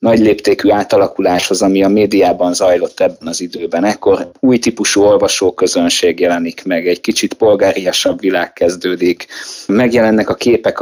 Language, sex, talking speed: Hungarian, male, 135 wpm